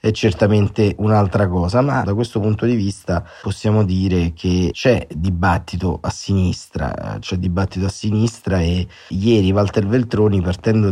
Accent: native